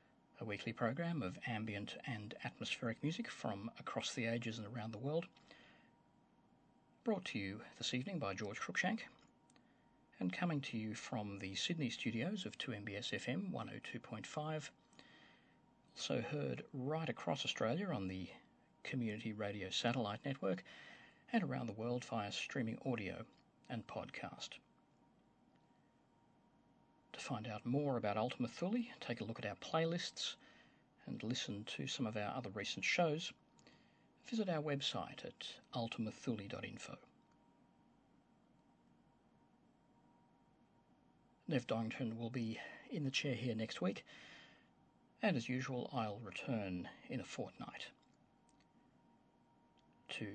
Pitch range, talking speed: 110-145 Hz, 120 wpm